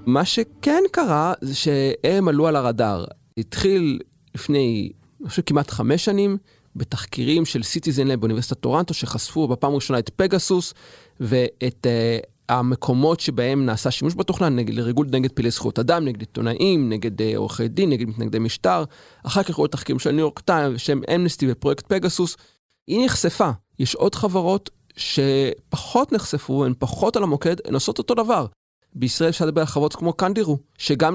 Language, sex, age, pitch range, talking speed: Hebrew, male, 30-49, 125-180 Hz, 160 wpm